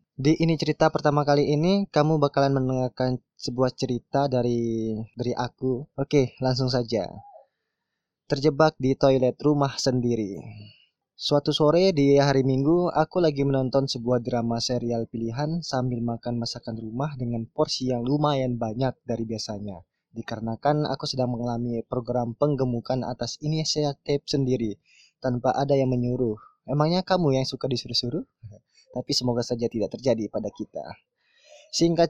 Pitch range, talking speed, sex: 125-150 Hz, 135 wpm, male